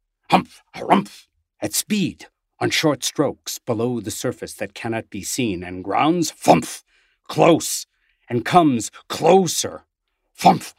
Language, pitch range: English, 95-130 Hz